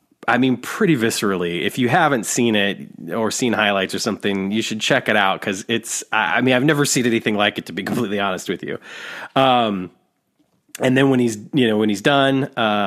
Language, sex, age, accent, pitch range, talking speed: English, male, 30-49, American, 100-130 Hz, 210 wpm